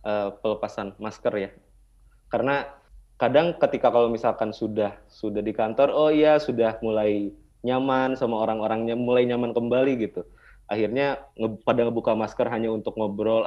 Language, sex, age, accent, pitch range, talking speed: Indonesian, male, 20-39, native, 105-125 Hz, 135 wpm